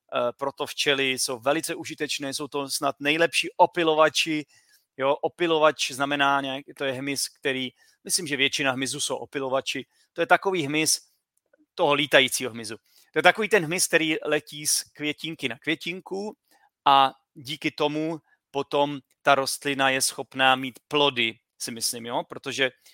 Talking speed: 145 wpm